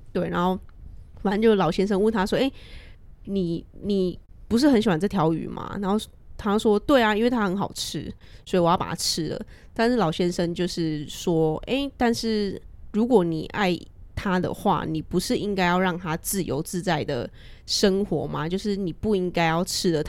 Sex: female